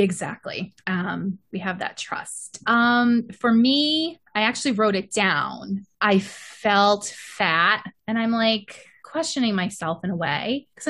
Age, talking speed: 20-39, 145 wpm